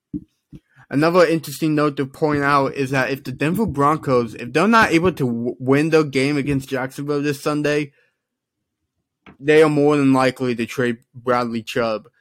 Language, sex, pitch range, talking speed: English, male, 120-150 Hz, 160 wpm